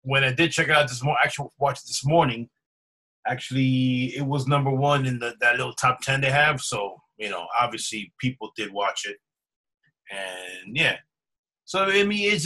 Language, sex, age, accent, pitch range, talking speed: English, male, 30-49, American, 125-145 Hz, 190 wpm